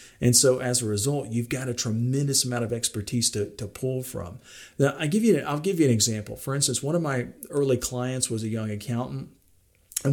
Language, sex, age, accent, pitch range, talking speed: English, male, 50-69, American, 115-150 Hz, 220 wpm